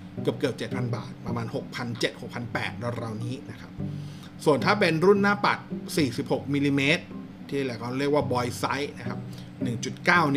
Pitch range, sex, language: 115-150 Hz, male, Thai